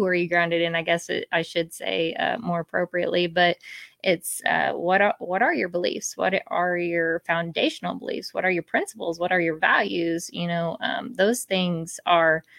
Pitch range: 175-225 Hz